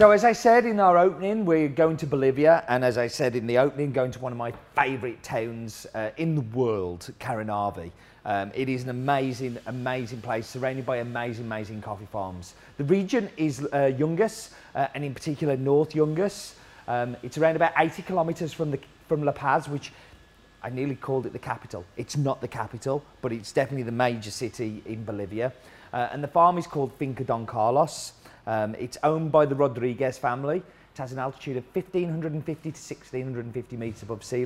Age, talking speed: 30-49, 190 wpm